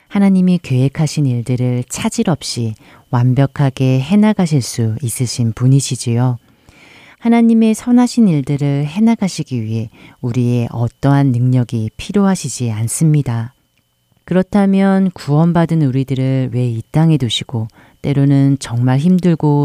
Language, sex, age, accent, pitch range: Korean, female, 40-59, native, 125-160 Hz